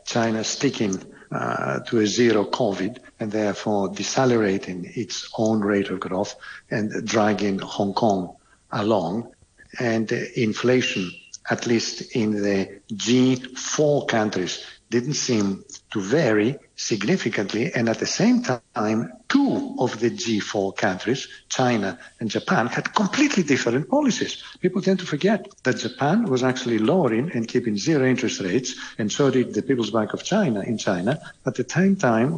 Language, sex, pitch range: English, male, 110-140 Hz